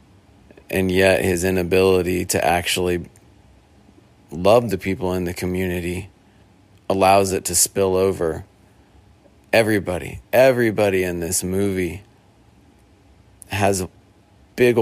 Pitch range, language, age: 90-100 Hz, English, 30-49